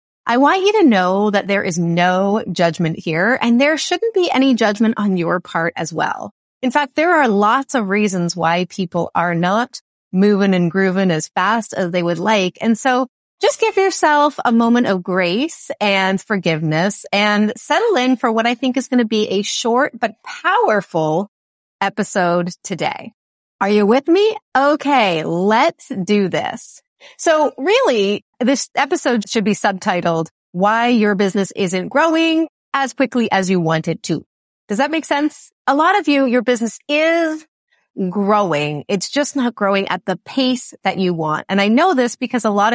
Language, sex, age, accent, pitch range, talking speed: English, female, 30-49, American, 190-265 Hz, 175 wpm